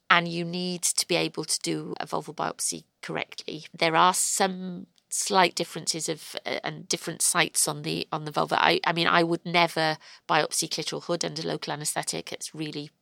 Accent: British